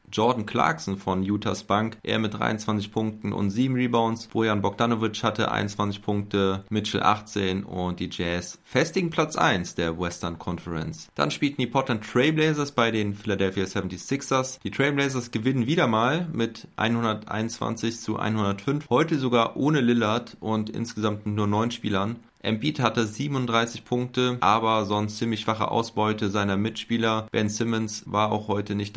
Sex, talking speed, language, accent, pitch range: male, 150 wpm, German, German, 100-120 Hz